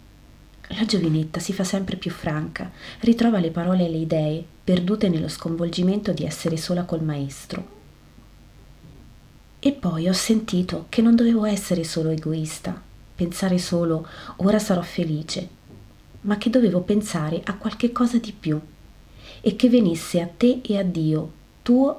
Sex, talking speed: female, 145 wpm